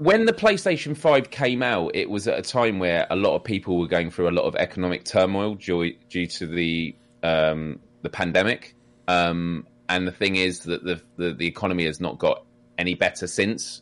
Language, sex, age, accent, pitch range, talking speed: English, male, 20-39, British, 85-105 Hz, 205 wpm